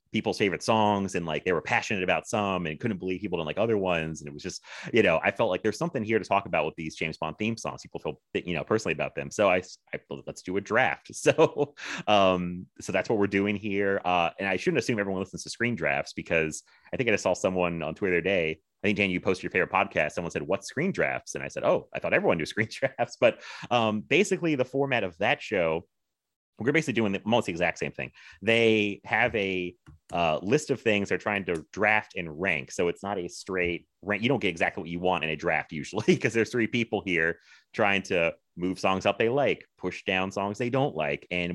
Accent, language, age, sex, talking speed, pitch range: American, English, 30-49, male, 245 wpm, 90-110 Hz